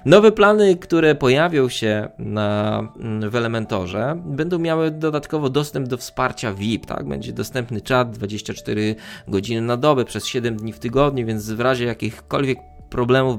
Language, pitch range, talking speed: Polish, 110-145 Hz, 140 wpm